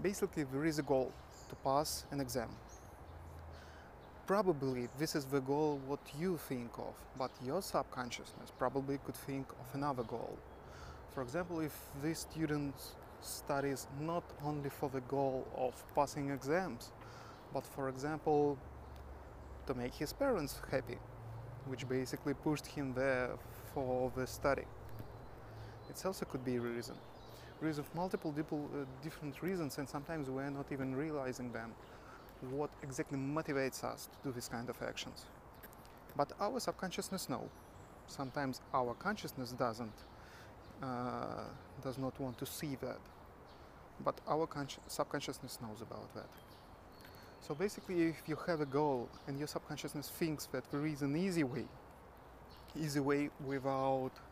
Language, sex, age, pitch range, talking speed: English, male, 20-39, 120-150 Hz, 140 wpm